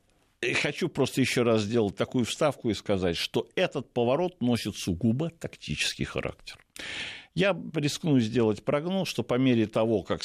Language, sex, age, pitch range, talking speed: Russian, male, 60-79, 100-140 Hz, 145 wpm